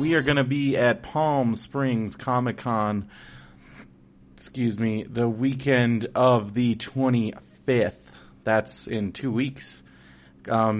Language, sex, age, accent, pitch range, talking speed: English, male, 30-49, American, 95-115 Hz, 120 wpm